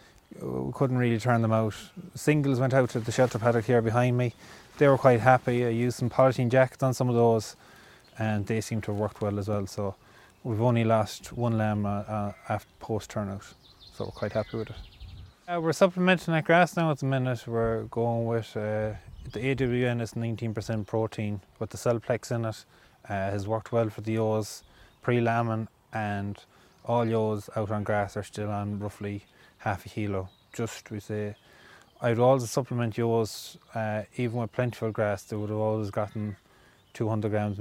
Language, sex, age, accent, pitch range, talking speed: English, male, 20-39, Irish, 105-120 Hz, 185 wpm